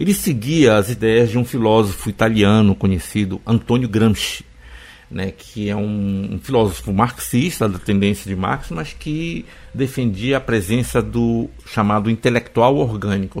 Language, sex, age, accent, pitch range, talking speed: Portuguese, male, 60-79, Brazilian, 100-125 Hz, 140 wpm